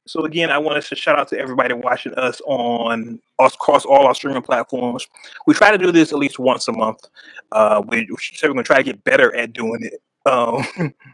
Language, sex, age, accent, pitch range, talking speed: English, male, 20-39, American, 120-170 Hz, 230 wpm